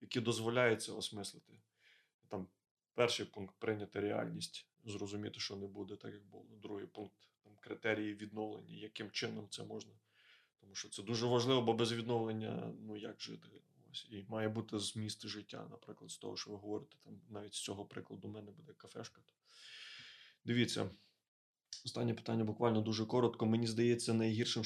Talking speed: 165 wpm